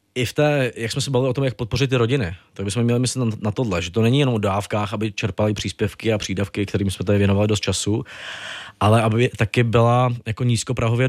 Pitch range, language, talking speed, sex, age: 105-125 Hz, Czech, 235 wpm, male, 20-39